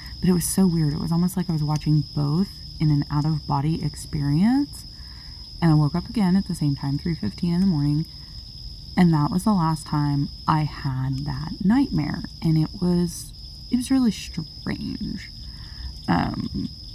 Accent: American